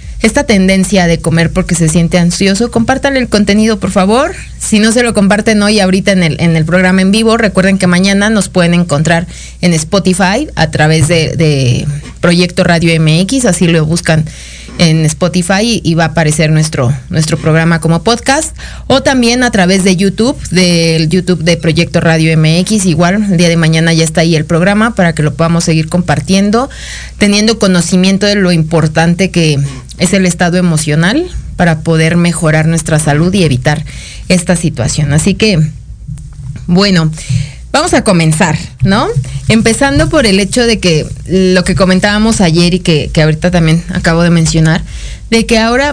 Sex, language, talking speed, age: female, Spanish, 170 wpm, 30-49